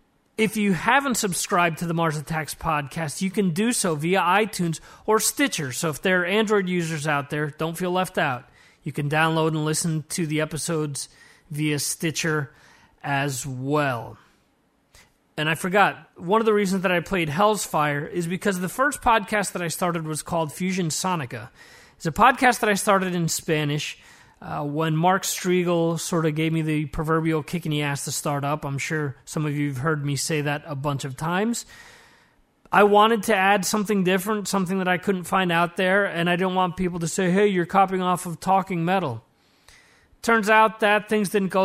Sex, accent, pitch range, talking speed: male, American, 155-200 Hz, 195 wpm